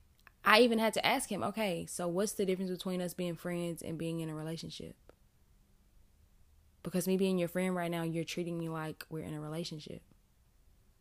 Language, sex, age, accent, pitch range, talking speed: English, female, 10-29, American, 160-220 Hz, 190 wpm